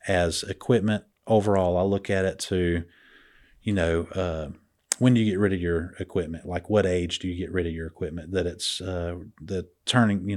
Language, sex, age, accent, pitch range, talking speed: English, male, 30-49, American, 90-105 Hz, 205 wpm